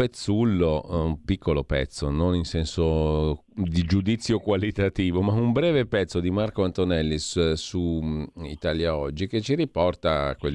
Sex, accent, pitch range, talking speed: male, native, 80-105 Hz, 135 wpm